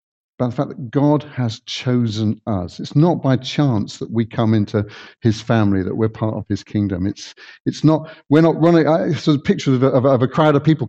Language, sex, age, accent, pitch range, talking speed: English, male, 50-69, British, 115-155 Hz, 220 wpm